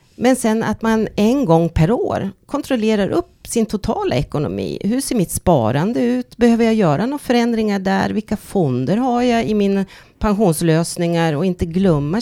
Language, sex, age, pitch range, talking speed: Swedish, female, 40-59, 150-205 Hz, 165 wpm